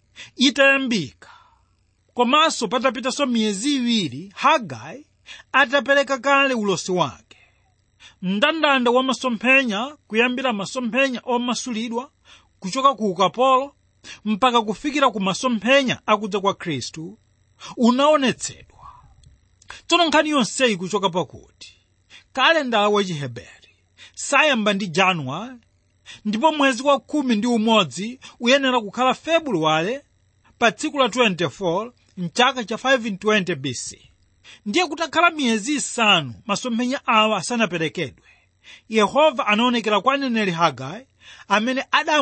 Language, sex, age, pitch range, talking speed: English, male, 40-59, 185-265 Hz, 105 wpm